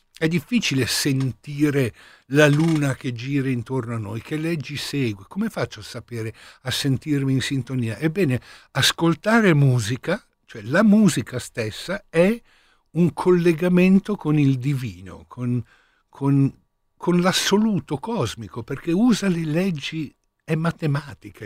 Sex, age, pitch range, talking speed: male, 60-79, 125-165 Hz, 125 wpm